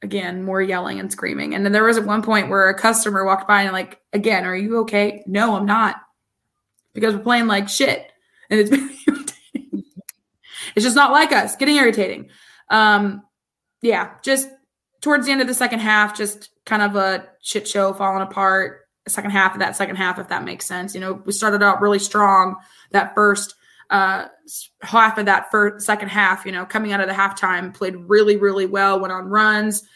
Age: 20-39